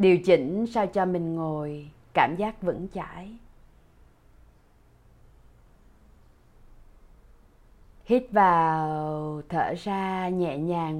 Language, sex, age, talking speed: Vietnamese, female, 20-39, 85 wpm